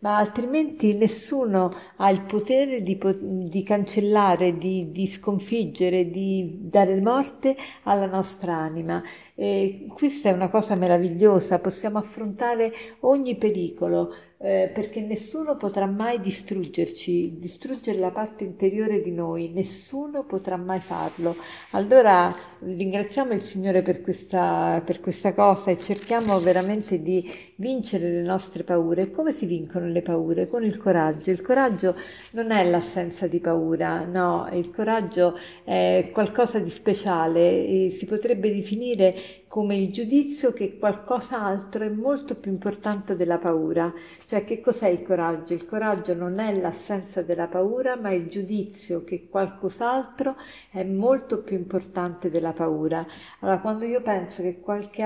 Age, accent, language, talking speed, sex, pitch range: 50-69, native, Italian, 135 wpm, female, 180-215 Hz